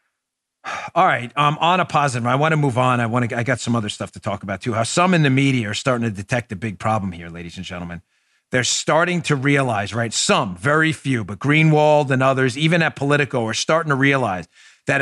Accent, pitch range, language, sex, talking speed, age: American, 100-135 Hz, English, male, 235 wpm, 40-59